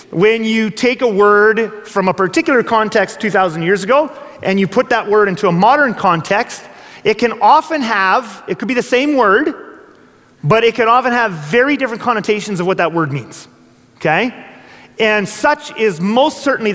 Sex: male